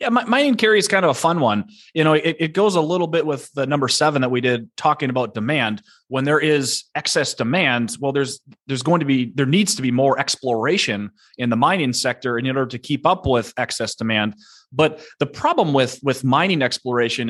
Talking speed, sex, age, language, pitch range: 220 wpm, male, 30-49, English, 125-155 Hz